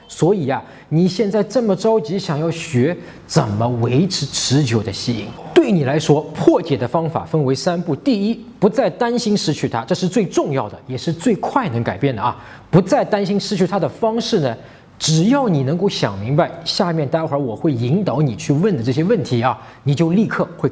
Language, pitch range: Chinese, 140-200 Hz